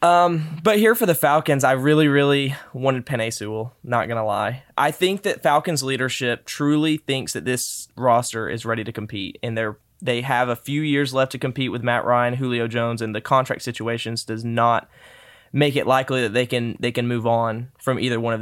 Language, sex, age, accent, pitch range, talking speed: English, male, 20-39, American, 120-145 Hz, 210 wpm